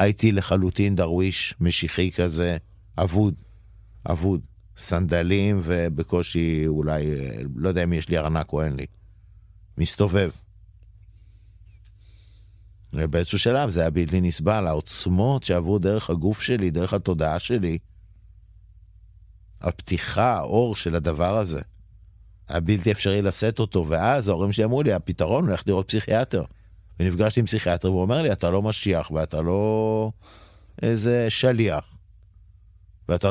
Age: 50-69